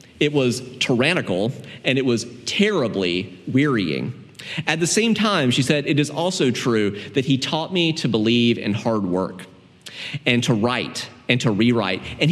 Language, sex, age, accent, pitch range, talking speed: English, male, 30-49, American, 105-145 Hz, 165 wpm